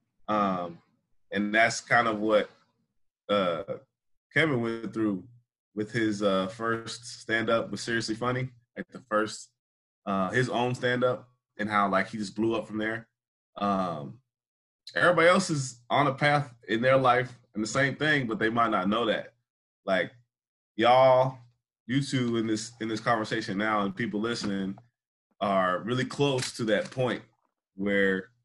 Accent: American